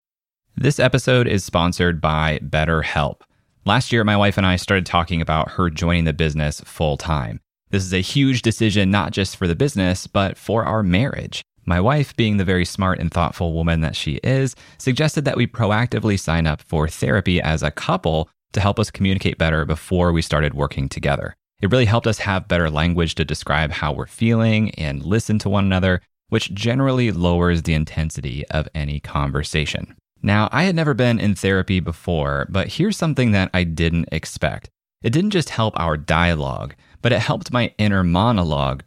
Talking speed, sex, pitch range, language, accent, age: 185 wpm, male, 80-110 Hz, English, American, 30-49